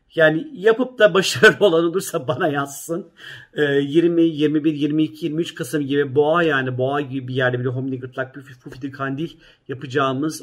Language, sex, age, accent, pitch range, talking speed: Turkish, male, 40-59, native, 140-185 Hz, 145 wpm